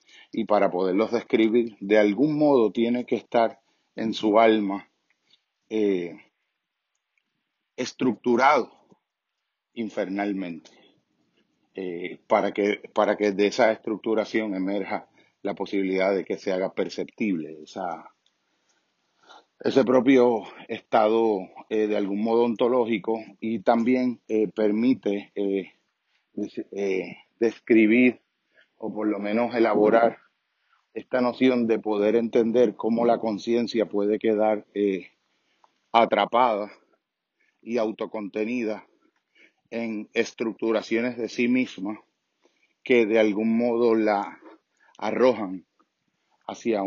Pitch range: 105-115 Hz